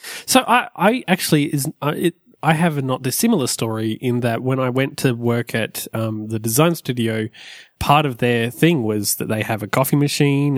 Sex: male